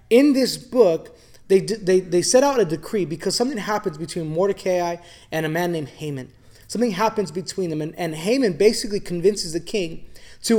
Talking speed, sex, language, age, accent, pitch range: 180 wpm, male, English, 20-39, American, 170-220 Hz